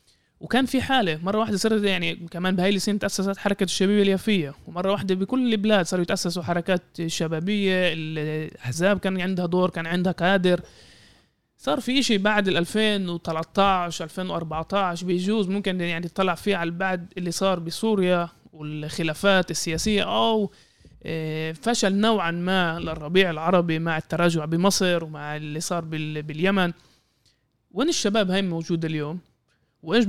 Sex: male